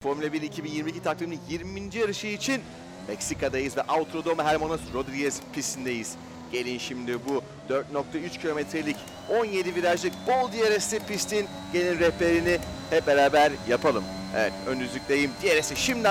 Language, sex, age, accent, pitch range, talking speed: Turkish, male, 40-59, native, 130-175 Hz, 125 wpm